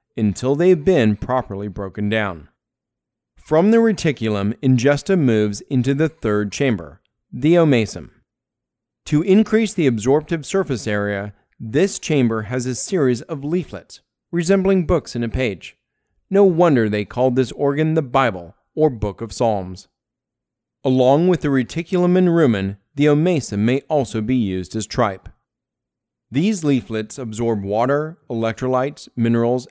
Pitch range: 105-150 Hz